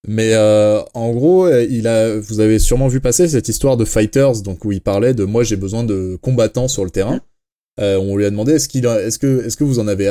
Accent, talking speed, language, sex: French, 255 wpm, French, male